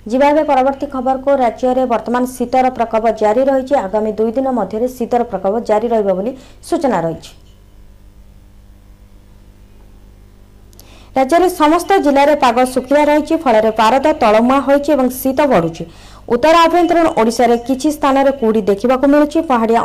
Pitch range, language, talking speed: 225-295 Hz, Hindi, 110 wpm